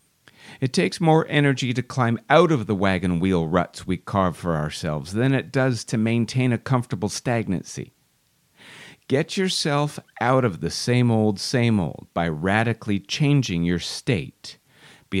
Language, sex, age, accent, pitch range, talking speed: English, male, 50-69, American, 110-145 Hz, 155 wpm